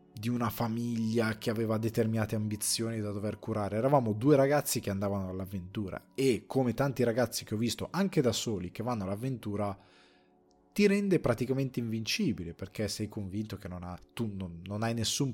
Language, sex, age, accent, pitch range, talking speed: Italian, male, 20-39, native, 95-120 Hz, 170 wpm